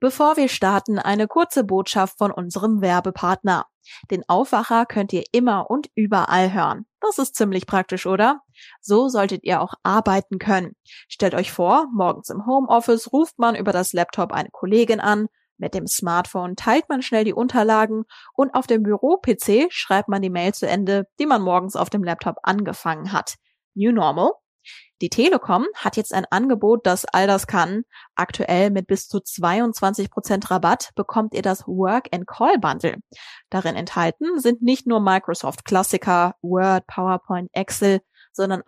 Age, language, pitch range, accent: 20-39, German, 185-225 Hz, German